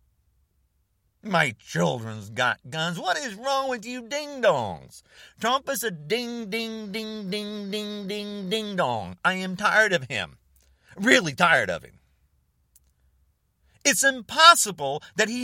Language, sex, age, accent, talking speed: English, male, 40-59, American, 110 wpm